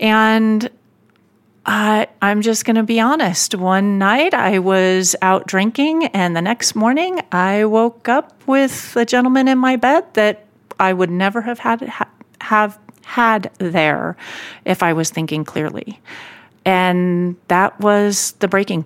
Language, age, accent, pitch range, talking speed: English, 40-59, American, 175-215 Hz, 150 wpm